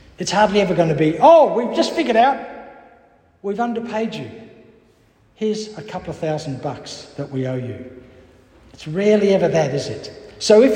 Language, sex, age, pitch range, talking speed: English, male, 60-79, 175-265 Hz, 180 wpm